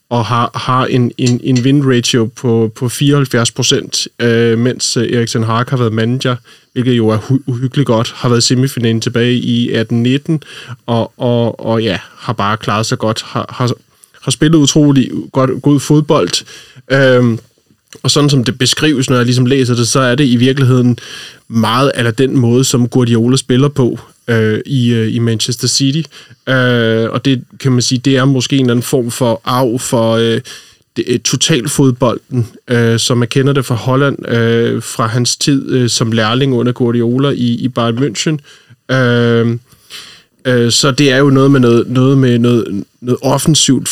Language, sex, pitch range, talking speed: Danish, male, 115-135 Hz, 160 wpm